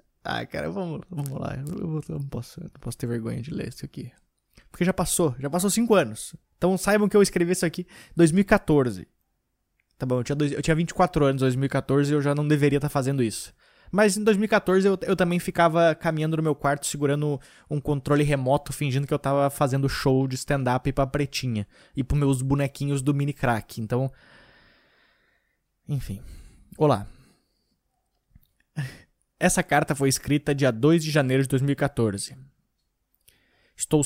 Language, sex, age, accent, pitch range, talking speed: Portuguese, male, 20-39, Brazilian, 135-175 Hz, 170 wpm